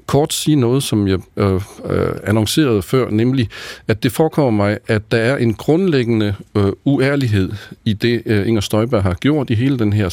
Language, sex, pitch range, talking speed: Danish, male, 100-140 Hz, 165 wpm